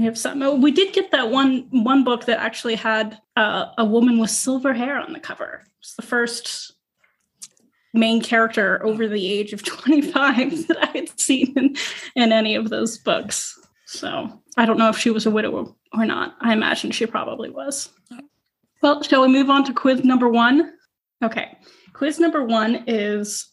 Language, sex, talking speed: English, female, 185 wpm